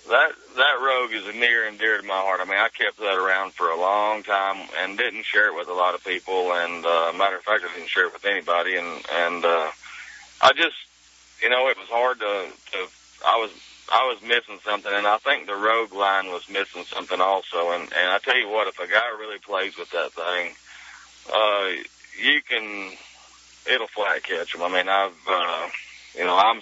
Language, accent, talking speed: English, American, 220 wpm